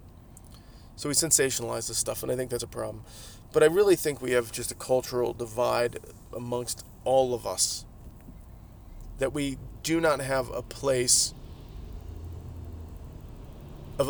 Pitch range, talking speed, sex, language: 110-145 Hz, 140 wpm, male, English